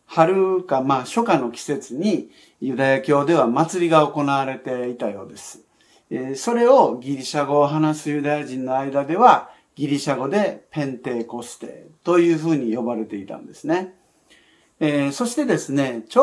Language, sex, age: Japanese, male, 50-69